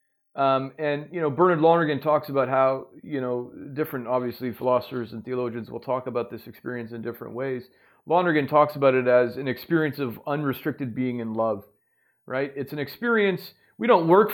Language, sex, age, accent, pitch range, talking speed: English, male, 40-59, American, 135-170 Hz, 180 wpm